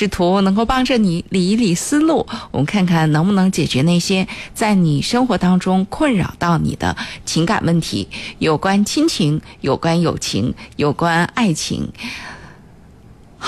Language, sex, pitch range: Chinese, female, 175-230 Hz